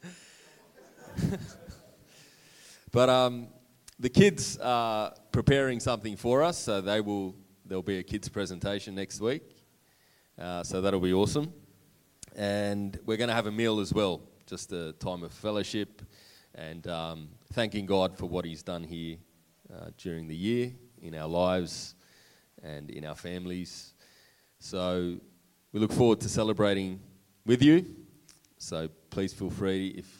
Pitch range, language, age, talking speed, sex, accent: 85-110 Hz, English, 20-39, 140 wpm, male, Australian